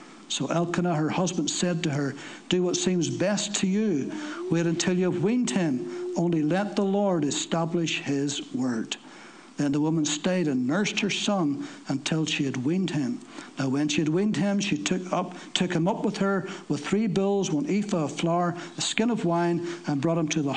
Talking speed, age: 200 wpm, 60-79